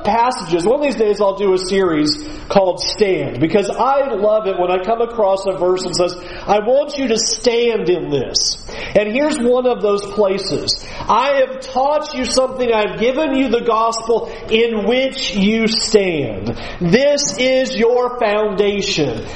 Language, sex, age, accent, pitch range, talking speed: English, male, 40-59, American, 195-250 Hz, 165 wpm